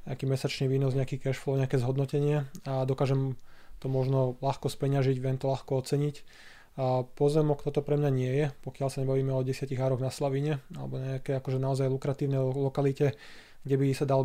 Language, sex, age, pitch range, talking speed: Slovak, male, 20-39, 130-140 Hz, 175 wpm